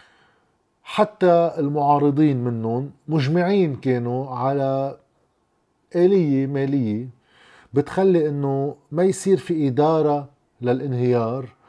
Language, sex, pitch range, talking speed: Arabic, male, 125-155 Hz, 75 wpm